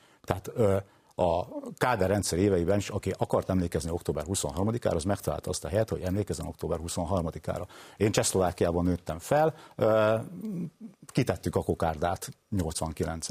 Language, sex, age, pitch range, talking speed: Hungarian, male, 50-69, 85-115 Hz, 125 wpm